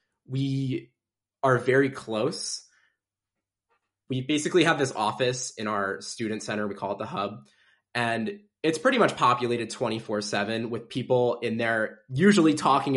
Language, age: English, 20-39